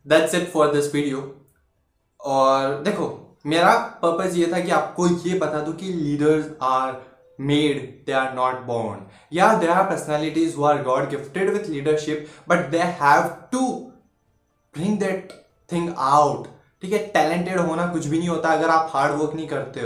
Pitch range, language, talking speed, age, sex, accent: 145-180 Hz, Hindi, 140 wpm, 20-39, male, native